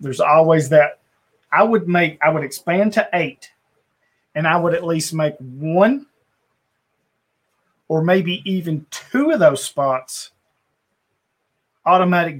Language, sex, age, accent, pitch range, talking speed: English, male, 30-49, American, 145-170 Hz, 125 wpm